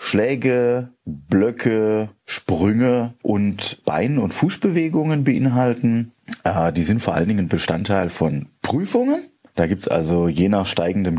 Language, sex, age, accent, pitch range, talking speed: German, male, 30-49, German, 95-155 Hz, 125 wpm